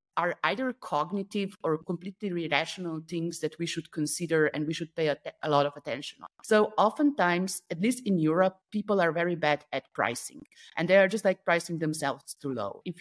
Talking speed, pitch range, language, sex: 200 wpm, 150-185 Hz, English, female